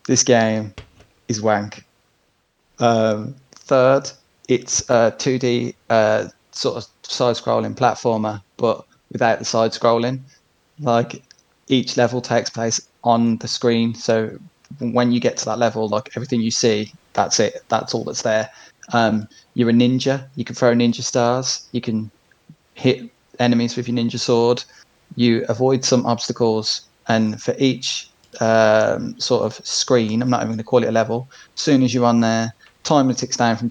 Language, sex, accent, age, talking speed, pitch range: English, male, British, 20-39, 160 wpm, 110-125 Hz